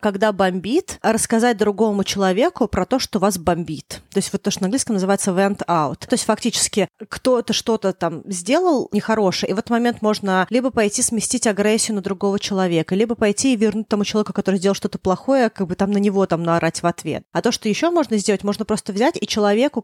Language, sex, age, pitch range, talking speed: Russian, female, 30-49, 190-225 Hz, 210 wpm